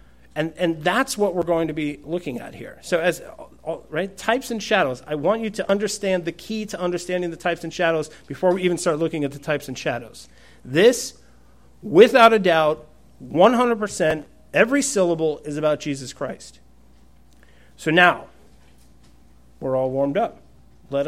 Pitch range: 140-195 Hz